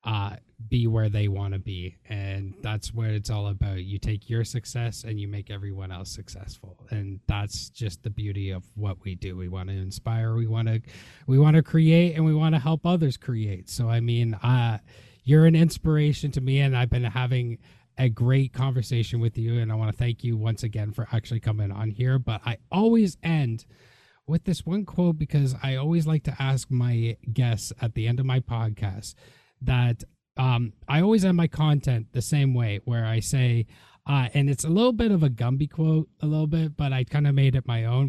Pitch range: 110-145 Hz